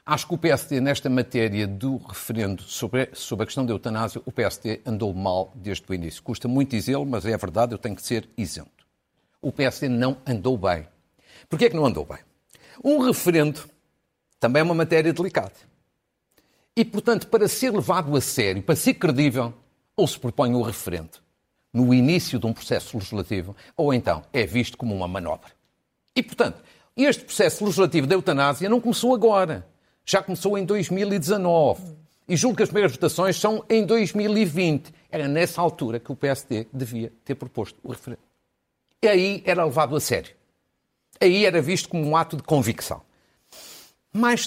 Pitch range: 120-190 Hz